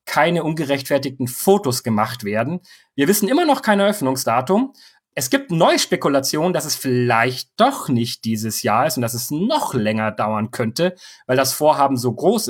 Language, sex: German, male